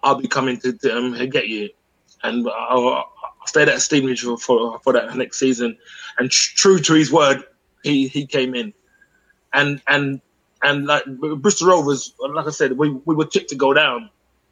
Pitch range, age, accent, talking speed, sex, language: 125-155 Hz, 20-39, British, 180 wpm, male, English